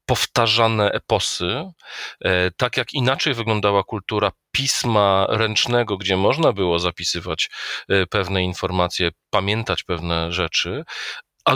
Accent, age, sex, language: native, 40-59, male, Polish